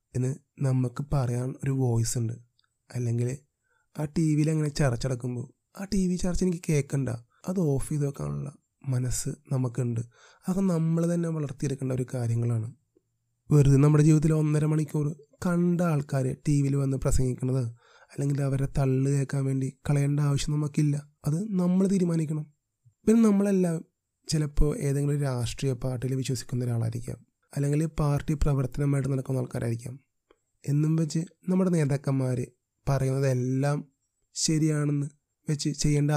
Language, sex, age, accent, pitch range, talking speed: Malayalam, male, 30-49, native, 125-155 Hz, 115 wpm